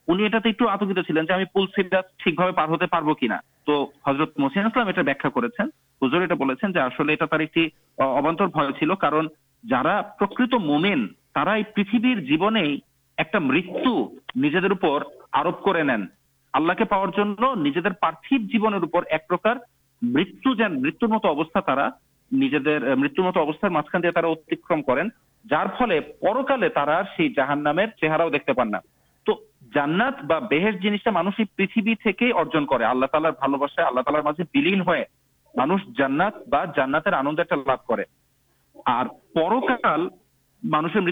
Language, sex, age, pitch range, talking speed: Urdu, male, 50-69, 155-215 Hz, 45 wpm